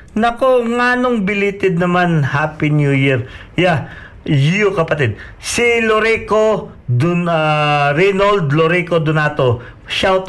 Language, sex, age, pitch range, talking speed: Filipino, male, 50-69, 125-185 Hz, 115 wpm